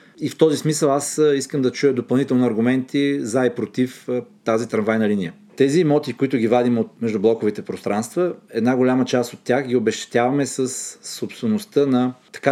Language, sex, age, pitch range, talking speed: Bulgarian, male, 40-59, 115-140 Hz, 170 wpm